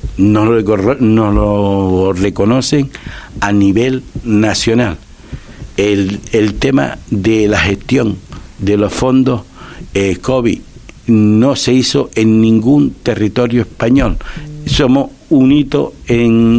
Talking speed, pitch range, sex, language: 110 wpm, 100-120 Hz, male, Spanish